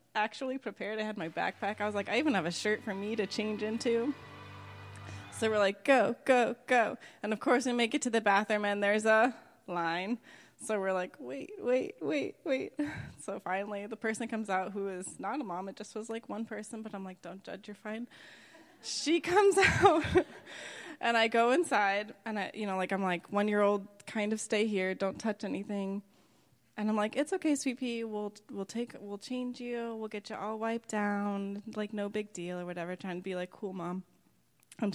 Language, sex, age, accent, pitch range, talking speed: English, female, 20-39, American, 200-265 Hz, 210 wpm